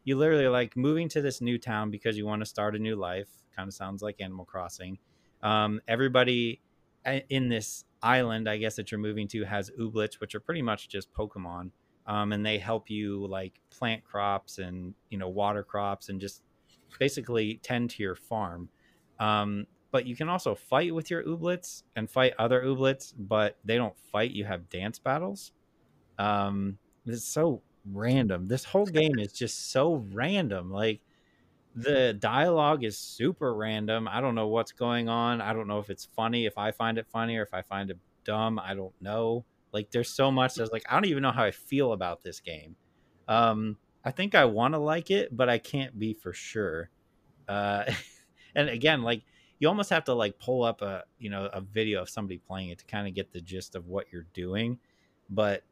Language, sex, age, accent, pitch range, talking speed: English, male, 30-49, American, 100-125 Hz, 200 wpm